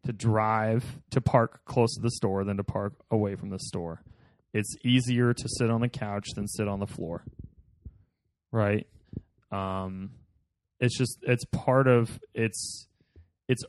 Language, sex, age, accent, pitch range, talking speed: English, male, 20-39, American, 105-130 Hz, 160 wpm